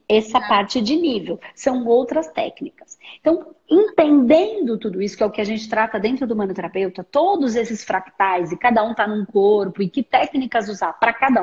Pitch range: 210-305 Hz